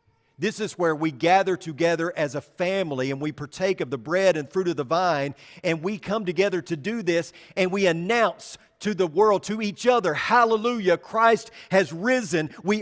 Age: 40-59